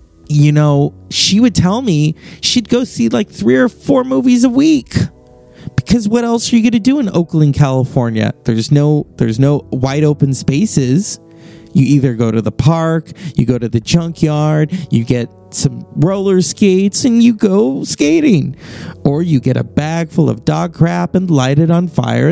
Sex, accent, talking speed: male, American, 185 wpm